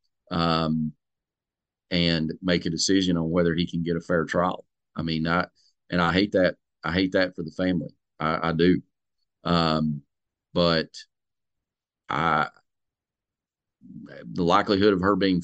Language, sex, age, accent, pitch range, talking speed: English, male, 40-59, American, 80-90 Hz, 145 wpm